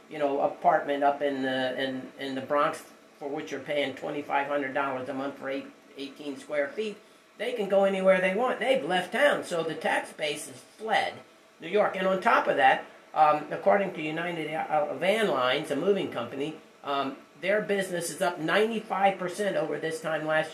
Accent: American